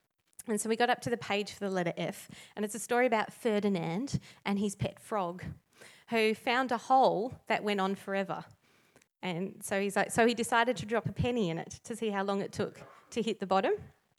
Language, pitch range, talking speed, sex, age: English, 185-220 Hz, 225 wpm, female, 30-49